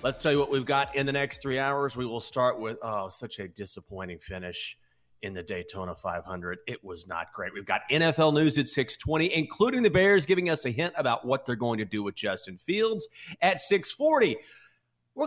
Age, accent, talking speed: 30-49, American, 210 wpm